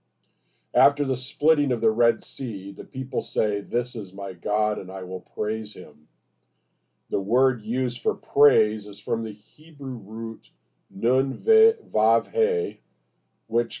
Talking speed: 145 wpm